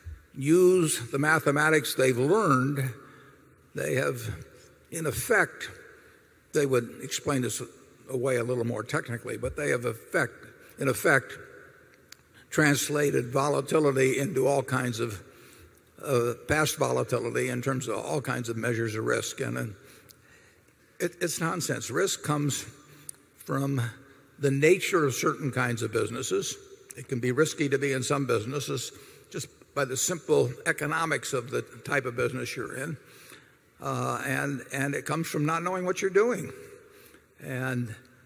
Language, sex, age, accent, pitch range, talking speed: English, male, 60-79, American, 125-150 Hz, 140 wpm